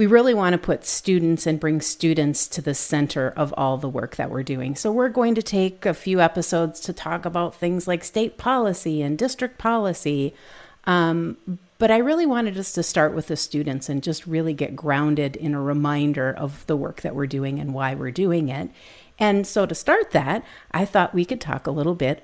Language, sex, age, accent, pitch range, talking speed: English, female, 50-69, American, 155-205 Hz, 215 wpm